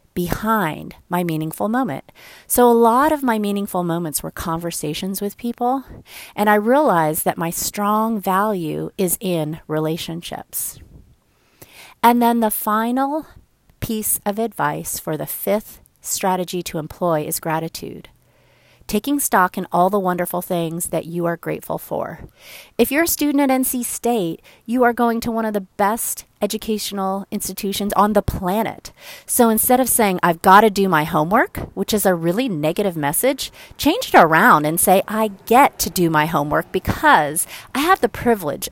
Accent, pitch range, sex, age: American, 170-230 Hz, female, 30-49